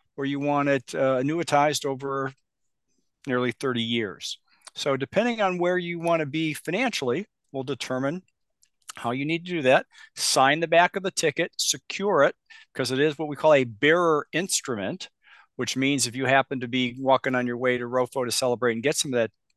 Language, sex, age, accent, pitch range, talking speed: English, male, 50-69, American, 125-150 Hz, 195 wpm